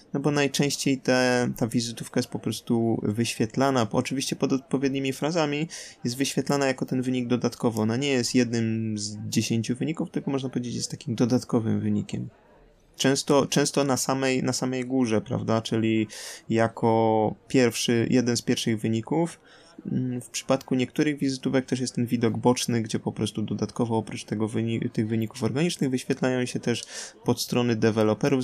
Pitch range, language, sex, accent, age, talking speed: 115-130 Hz, Polish, male, native, 20-39, 150 wpm